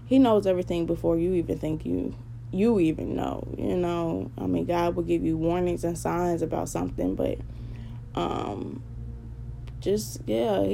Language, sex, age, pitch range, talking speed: English, female, 10-29, 115-190 Hz, 155 wpm